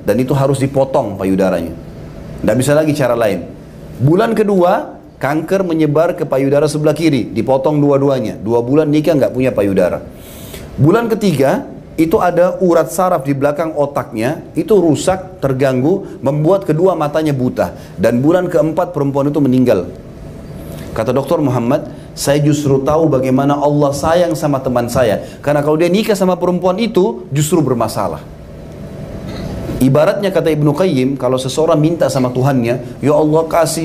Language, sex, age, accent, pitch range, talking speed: Indonesian, male, 30-49, native, 140-180 Hz, 145 wpm